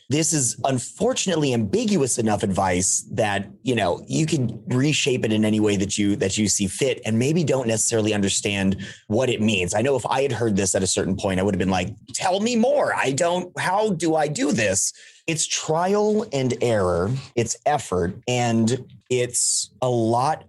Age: 30-49